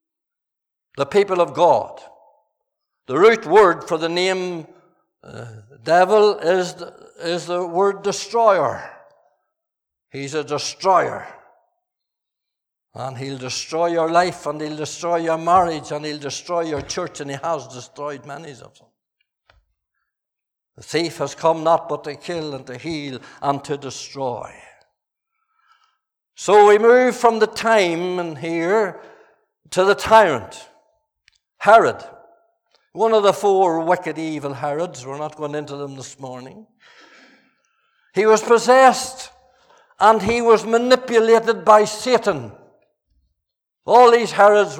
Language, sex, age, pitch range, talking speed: English, male, 60-79, 150-220 Hz, 125 wpm